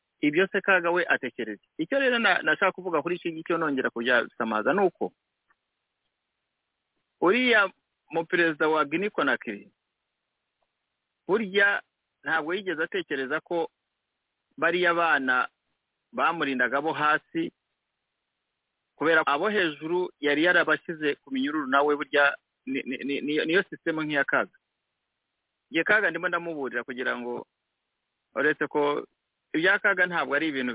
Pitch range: 145-195 Hz